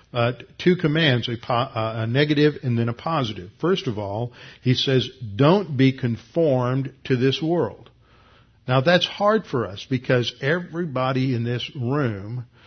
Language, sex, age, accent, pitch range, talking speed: English, male, 50-69, American, 115-135 Hz, 150 wpm